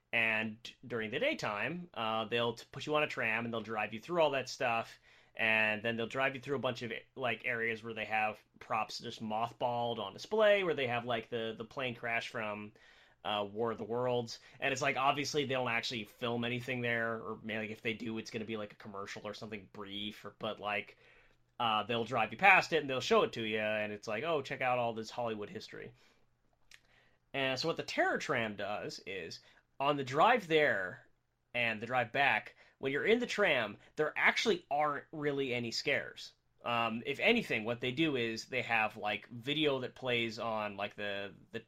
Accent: American